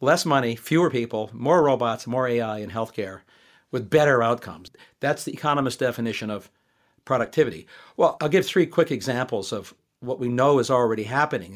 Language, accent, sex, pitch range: English, American, male, 120-155 Hz